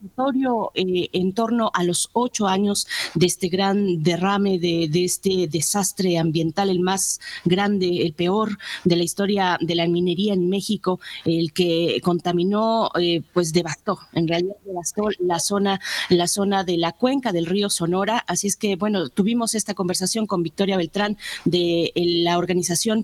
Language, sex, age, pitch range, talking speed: Spanish, female, 30-49, 175-210 Hz, 155 wpm